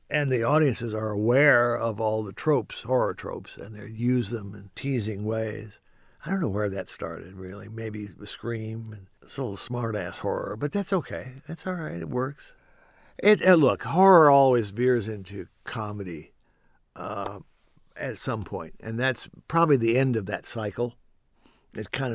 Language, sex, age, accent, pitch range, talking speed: English, male, 60-79, American, 105-135 Hz, 170 wpm